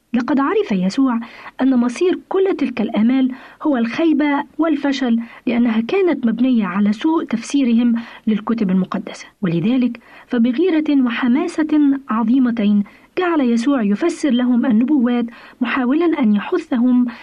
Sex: female